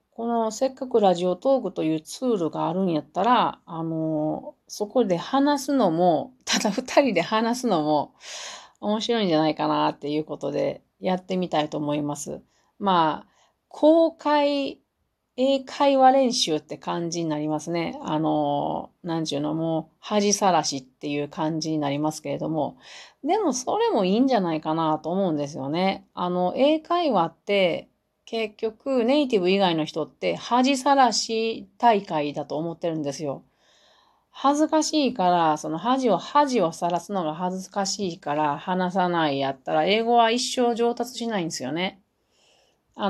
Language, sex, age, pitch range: Japanese, female, 40-59, 155-235 Hz